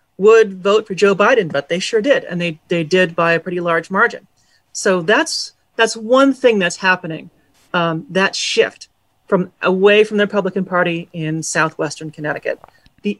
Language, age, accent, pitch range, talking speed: English, 40-59, American, 165-205 Hz, 175 wpm